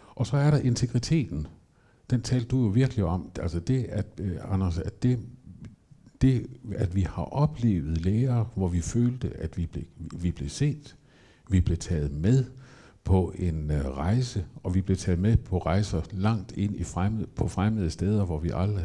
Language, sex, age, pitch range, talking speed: Danish, male, 60-79, 85-110 Hz, 180 wpm